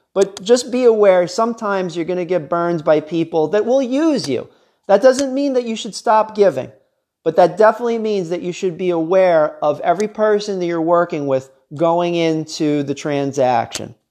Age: 40-59